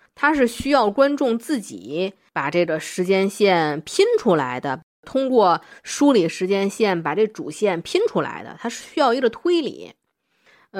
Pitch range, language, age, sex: 175-275 Hz, Chinese, 20-39, female